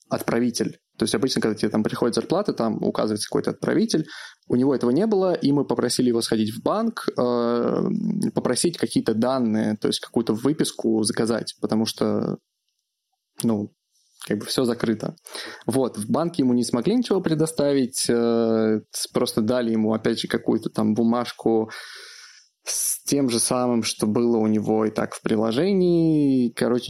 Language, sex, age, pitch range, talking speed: Russian, male, 20-39, 115-130 Hz, 155 wpm